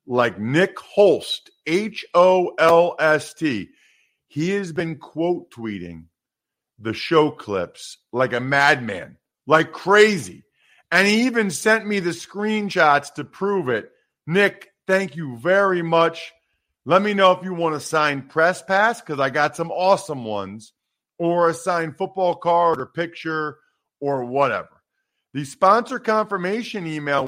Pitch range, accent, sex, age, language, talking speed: 145-195 Hz, American, male, 40-59, English, 135 wpm